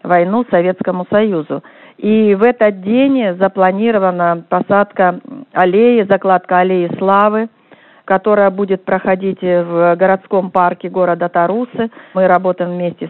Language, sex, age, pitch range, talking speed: Russian, female, 40-59, 180-225 Hz, 110 wpm